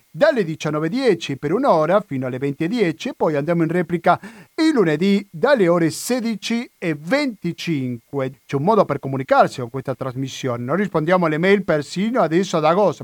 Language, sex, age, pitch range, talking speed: Italian, male, 50-69, 145-200 Hz, 150 wpm